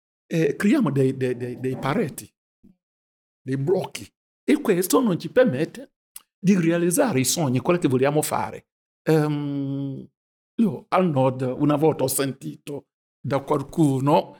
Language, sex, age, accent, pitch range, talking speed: Italian, male, 60-79, Nigerian, 145-220 Hz, 135 wpm